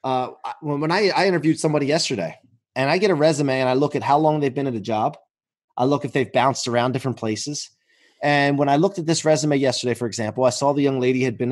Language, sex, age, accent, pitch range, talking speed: English, male, 30-49, American, 120-155 Hz, 250 wpm